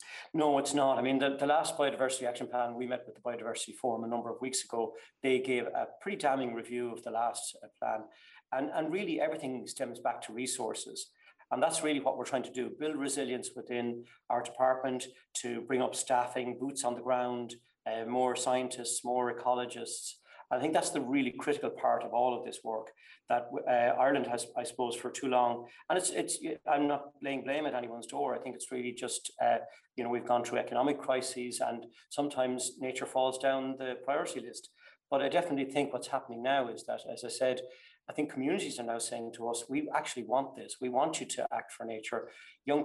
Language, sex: English, male